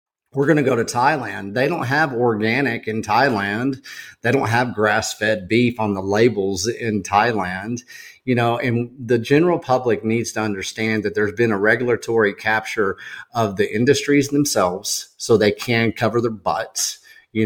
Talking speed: 170 wpm